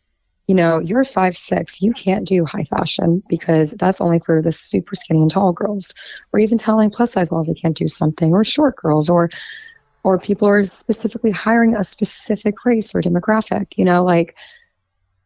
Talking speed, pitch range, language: 180 wpm, 155-205 Hz, English